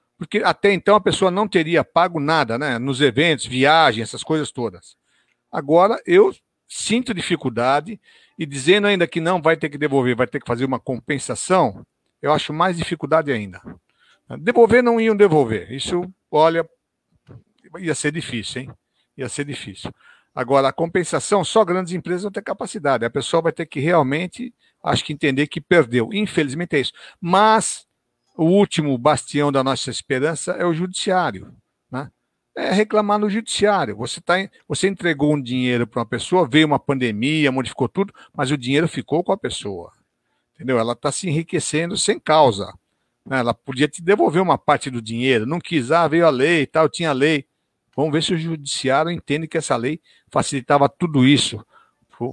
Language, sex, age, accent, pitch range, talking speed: Portuguese, male, 60-79, Brazilian, 130-180 Hz, 175 wpm